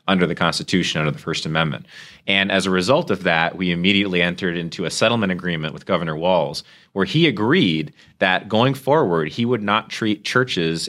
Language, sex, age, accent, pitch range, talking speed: English, male, 30-49, American, 85-110 Hz, 185 wpm